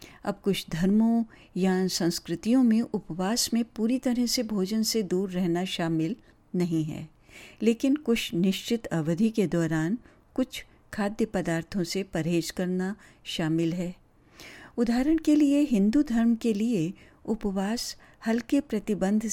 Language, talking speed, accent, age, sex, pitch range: Hindi, 130 wpm, native, 60-79, female, 170-230 Hz